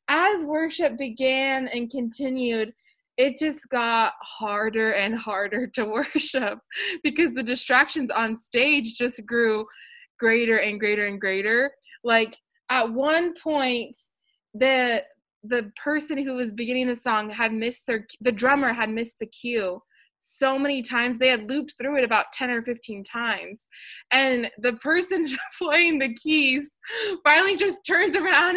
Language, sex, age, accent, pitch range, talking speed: English, female, 20-39, American, 225-325 Hz, 145 wpm